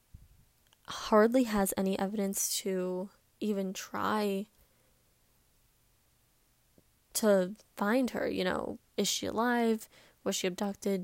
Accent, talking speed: American, 100 wpm